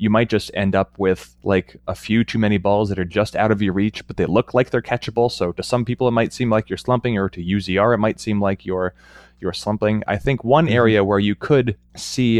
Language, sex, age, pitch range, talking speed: English, male, 20-39, 100-125 Hz, 255 wpm